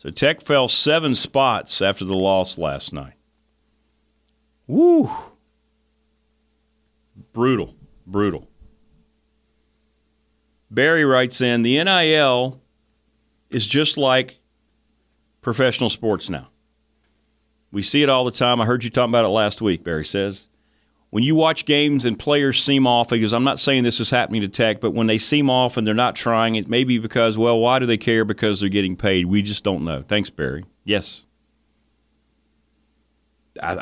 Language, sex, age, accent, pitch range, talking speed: English, male, 40-59, American, 90-130 Hz, 155 wpm